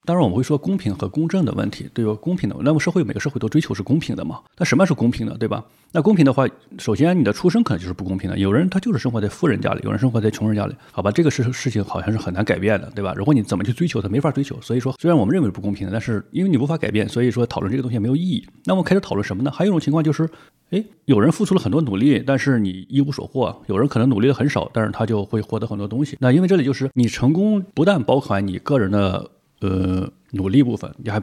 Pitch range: 110-155 Hz